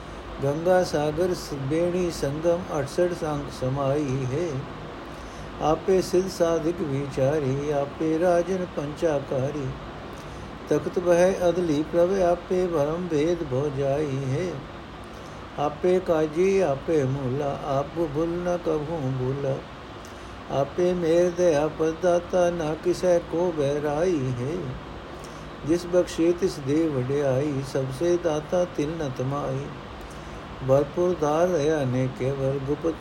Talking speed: 100 wpm